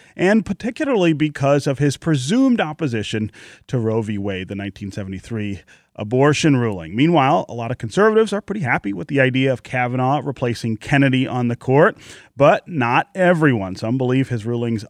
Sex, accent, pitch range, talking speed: male, American, 115-155 Hz, 160 wpm